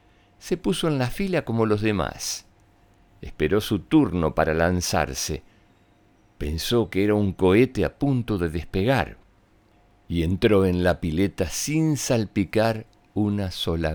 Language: Spanish